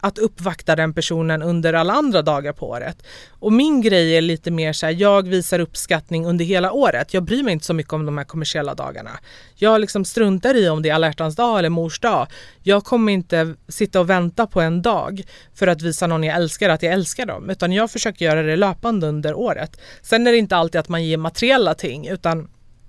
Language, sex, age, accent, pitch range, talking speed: Swedish, female, 30-49, native, 165-200 Hz, 220 wpm